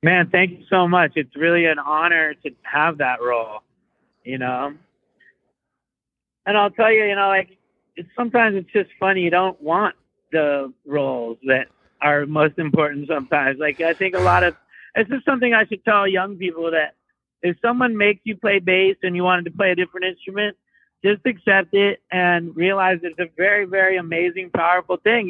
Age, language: 50-69, English